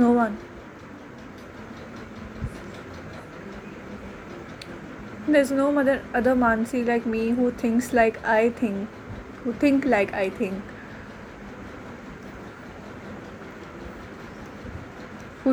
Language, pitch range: Hindi, 220-275 Hz